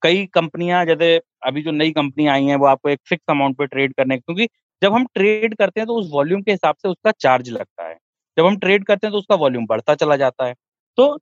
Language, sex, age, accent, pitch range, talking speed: Hindi, male, 30-49, native, 150-230 Hz, 250 wpm